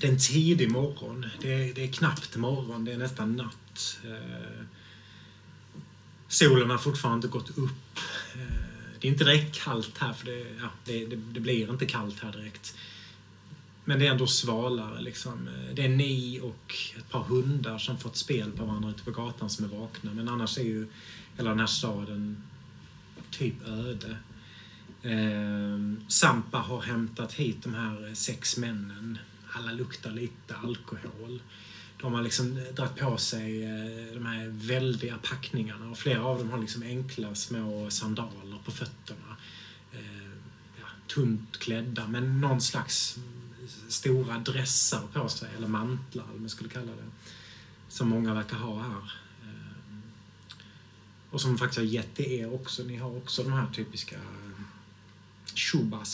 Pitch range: 105-125 Hz